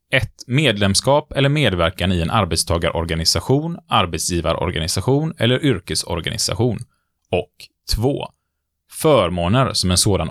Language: Swedish